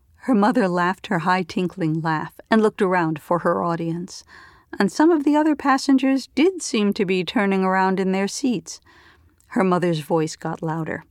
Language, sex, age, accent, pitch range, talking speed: English, female, 50-69, American, 170-245 Hz, 175 wpm